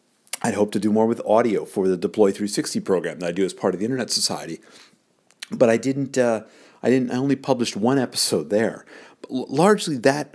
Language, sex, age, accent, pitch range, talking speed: English, male, 50-69, American, 90-110 Hz, 215 wpm